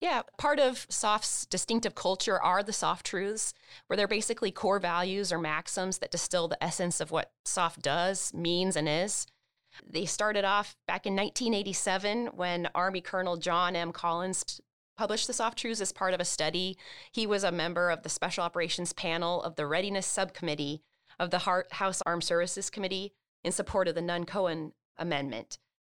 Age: 30-49